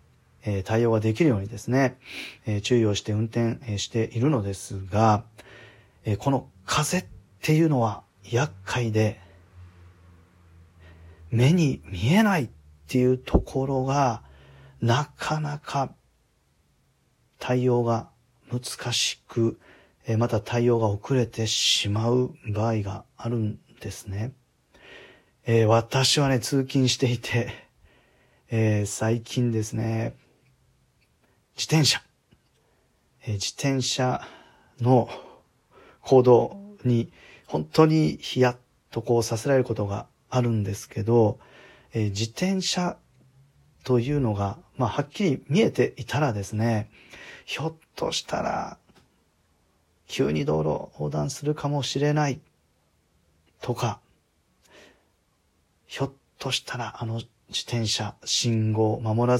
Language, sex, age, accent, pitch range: Japanese, male, 40-59, native, 105-130 Hz